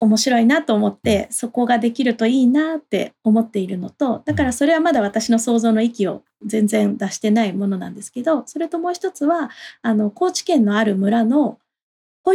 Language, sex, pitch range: Japanese, female, 215-310 Hz